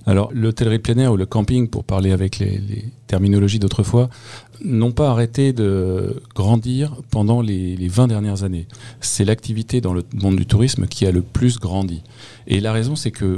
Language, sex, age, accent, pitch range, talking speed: French, male, 40-59, French, 95-120 Hz, 190 wpm